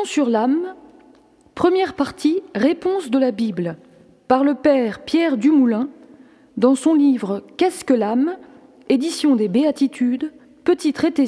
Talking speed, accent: 130 wpm, French